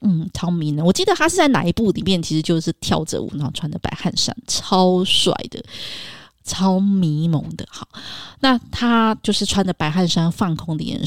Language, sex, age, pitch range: Chinese, female, 20-39, 165-215 Hz